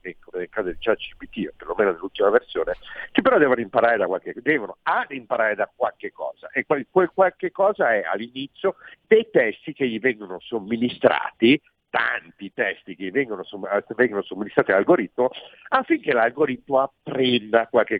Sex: male